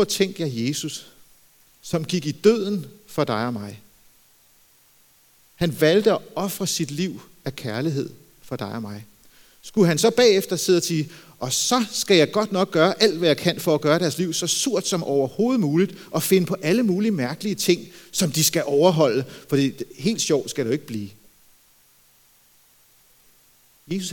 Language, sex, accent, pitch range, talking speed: Danish, male, native, 130-180 Hz, 180 wpm